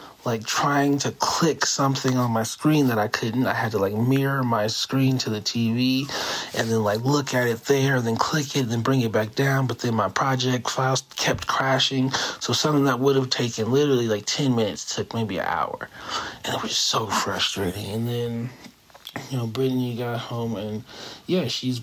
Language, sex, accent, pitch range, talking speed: English, male, American, 115-135 Hz, 205 wpm